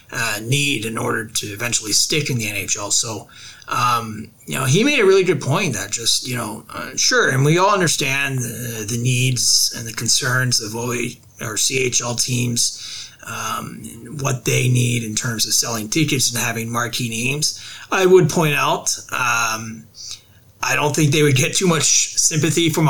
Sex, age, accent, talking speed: male, 30-49, American, 180 wpm